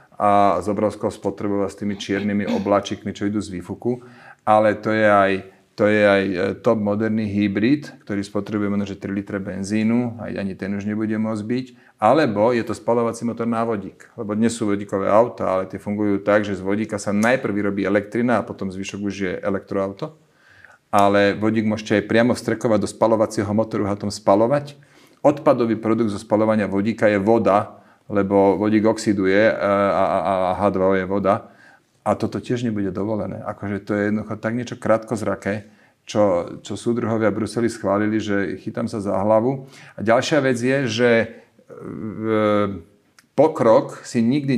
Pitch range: 100-115 Hz